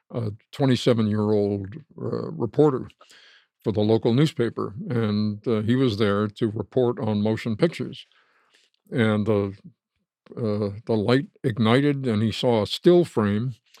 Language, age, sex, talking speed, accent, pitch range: English, 60-79, male, 135 wpm, American, 110-135 Hz